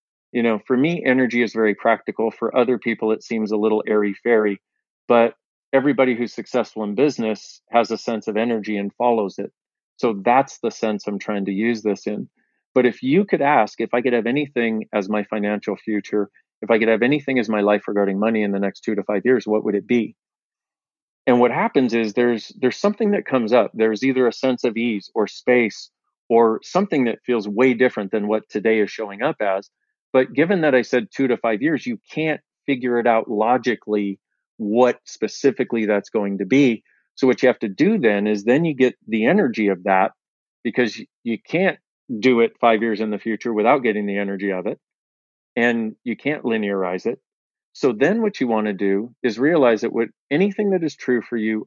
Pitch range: 105-125 Hz